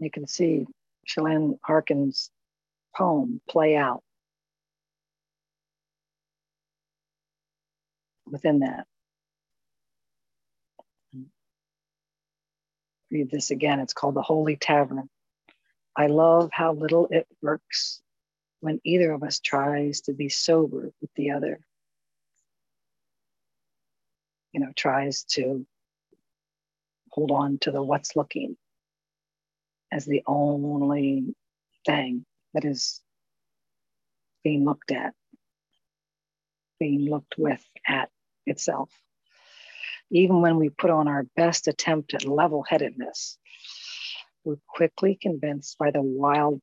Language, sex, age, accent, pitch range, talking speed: English, female, 50-69, American, 145-155 Hz, 95 wpm